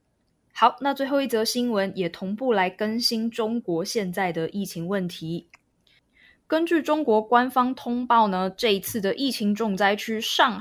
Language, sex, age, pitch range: Chinese, female, 20-39, 190-250 Hz